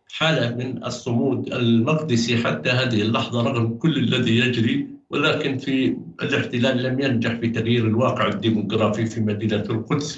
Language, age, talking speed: Arabic, 60-79, 135 wpm